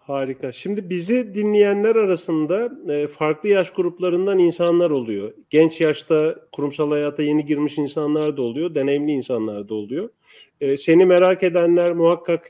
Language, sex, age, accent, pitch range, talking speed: Turkish, male, 40-59, native, 145-185 Hz, 130 wpm